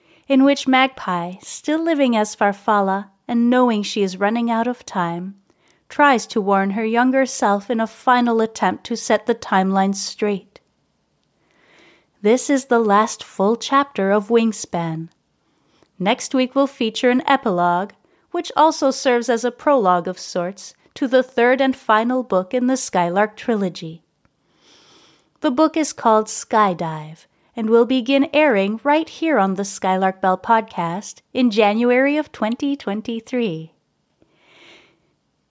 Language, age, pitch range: English, 30-49, 180-255 Hz